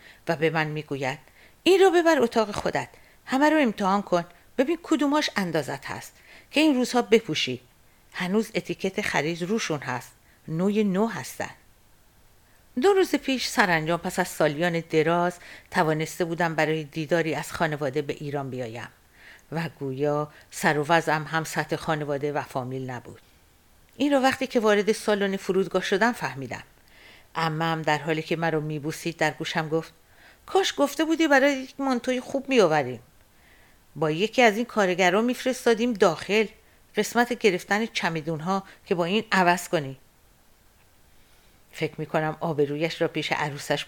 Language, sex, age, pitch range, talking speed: Persian, female, 50-69, 150-210 Hz, 140 wpm